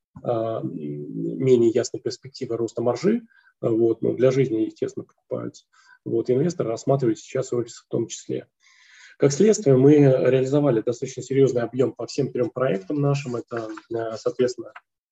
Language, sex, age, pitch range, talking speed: Russian, male, 20-39, 120-140 Hz, 125 wpm